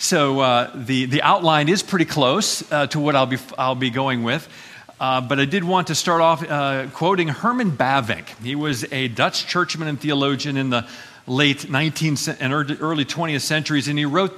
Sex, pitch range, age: male, 130-165 Hz, 50-69